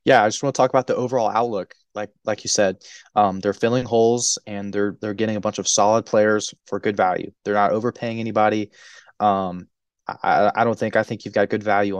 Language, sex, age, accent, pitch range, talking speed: English, male, 20-39, American, 100-115 Hz, 225 wpm